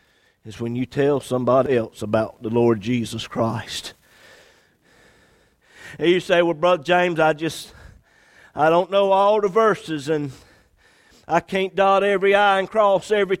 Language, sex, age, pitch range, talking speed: English, male, 50-69, 115-170 Hz, 150 wpm